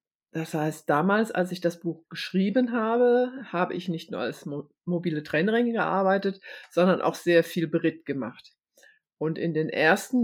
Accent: German